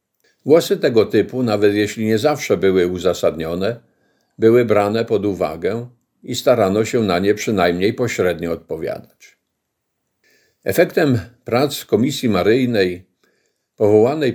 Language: Polish